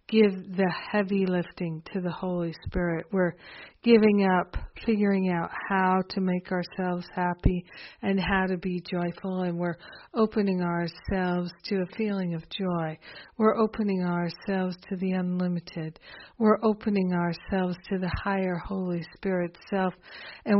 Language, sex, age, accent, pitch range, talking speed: English, female, 60-79, American, 175-200 Hz, 140 wpm